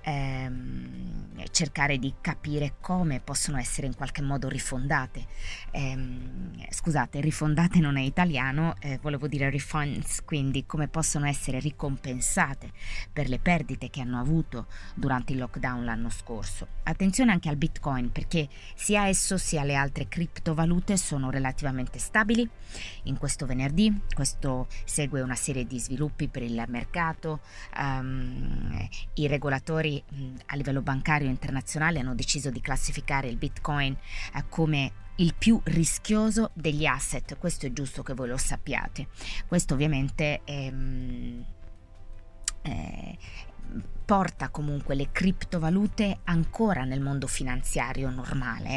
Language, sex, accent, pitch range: Italian, female, native, 125-160 Hz